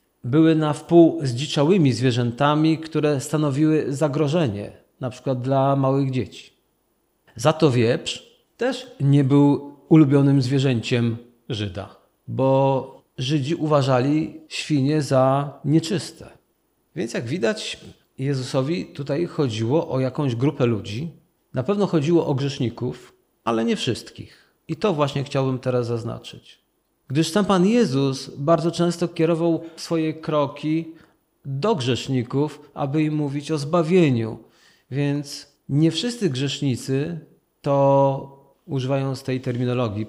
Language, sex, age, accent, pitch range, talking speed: Polish, male, 40-59, native, 130-160 Hz, 115 wpm